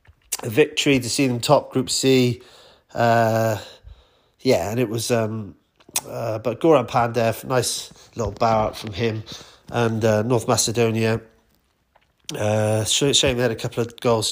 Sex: male